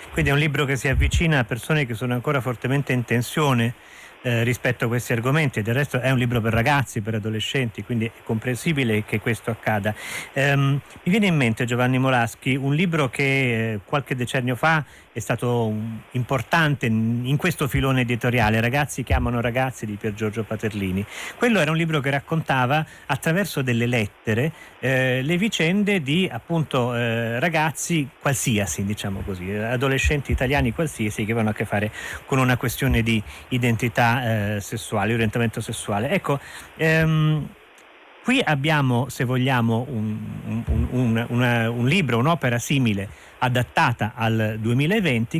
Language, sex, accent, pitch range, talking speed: Italian, male, native, 115-150 Hz, 150 wpm